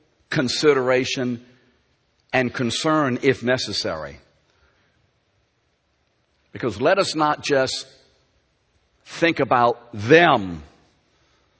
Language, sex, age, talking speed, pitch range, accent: English, male, 60-79, 65 wpm, 90-135 Hz, American